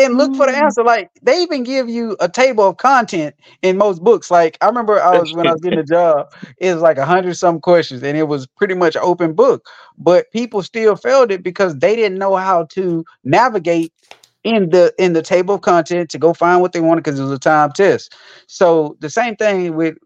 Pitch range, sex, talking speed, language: 140-185 Hz, male, 230 wpm, English